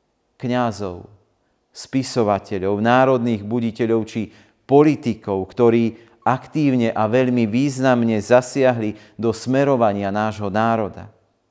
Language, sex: Slovak, male